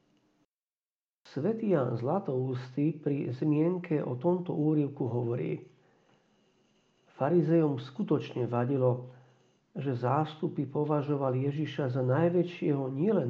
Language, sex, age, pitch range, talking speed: Slovak, male, 50-69, 130-170 Hz, 85 wpm